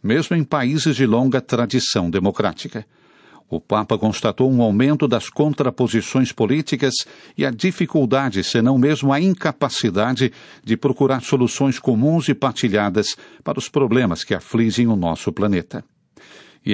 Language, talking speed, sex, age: Portuguese, 135 wpm, male, 60-79